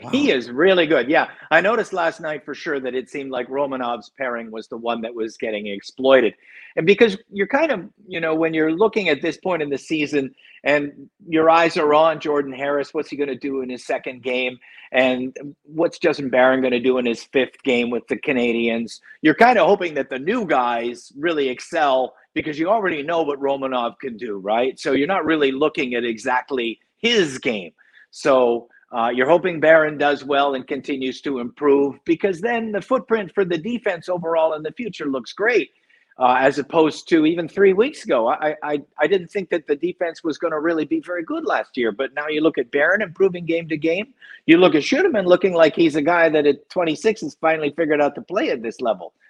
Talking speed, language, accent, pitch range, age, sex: 215 wpm, English, American, 130-185 Hz, 50-69, male